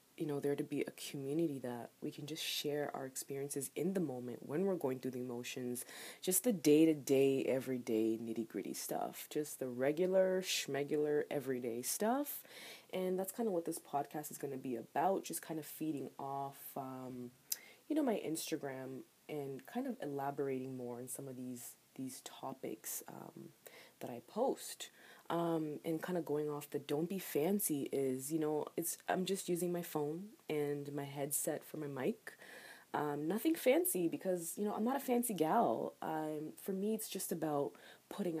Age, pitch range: 20-39, 135-165 Hz